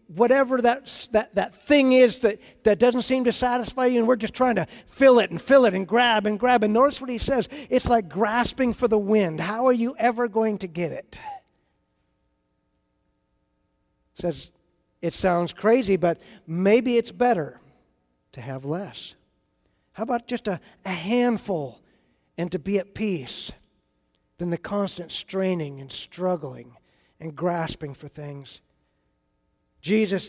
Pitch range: 165-235 Hz